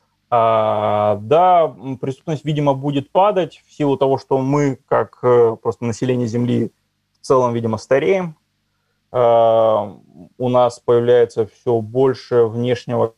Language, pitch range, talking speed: Russian, 110-130 Hz, 110 wpm